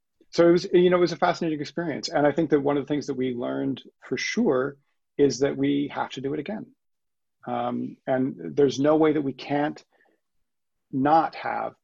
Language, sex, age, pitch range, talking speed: English, male, 40-59, 125-155 Hz, 210 wpm